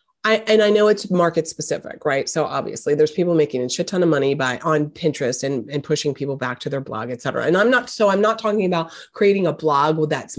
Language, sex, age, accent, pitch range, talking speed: English, female, 30-49, American, 150-190 Hz, 250 wpm